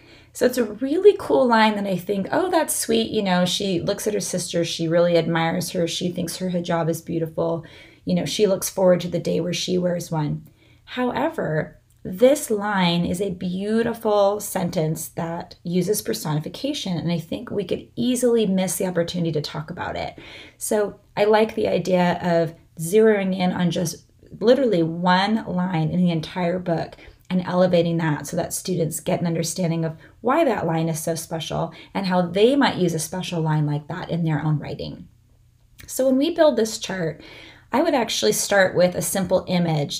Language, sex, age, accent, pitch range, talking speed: English, female, 30-49, American, 165-210 Hz, 190 wpm